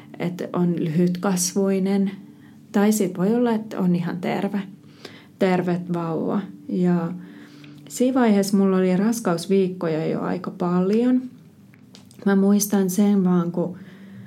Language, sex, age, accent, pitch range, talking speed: Finnish, female, 30-49, native, 180-215 Hz, 115 wpm